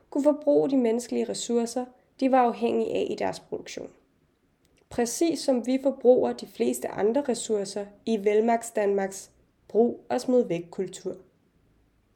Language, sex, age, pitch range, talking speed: Danish, female, 20-39, 205-255 Hz, 130 wpm